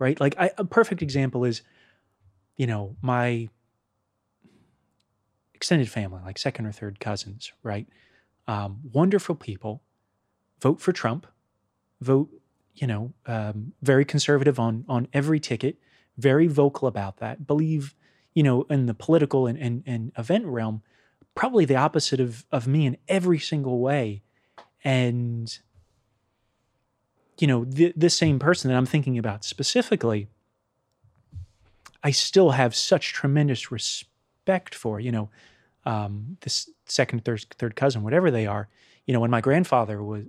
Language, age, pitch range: English, 30-49, 105-140 Hz